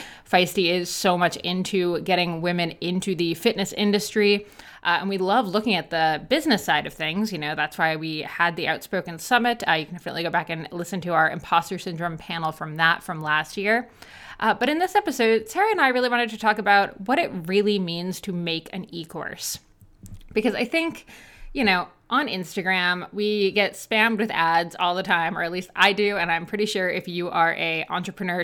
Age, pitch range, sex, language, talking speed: 20-39, 175-220 Hz, female, English, 210 wpm